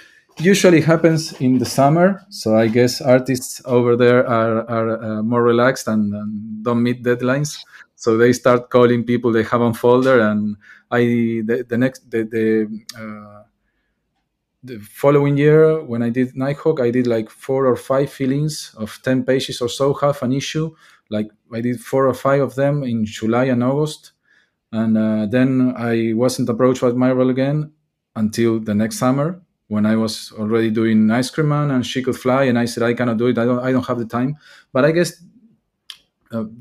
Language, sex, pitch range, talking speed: English, male, 115-135 Hz, 190 wpm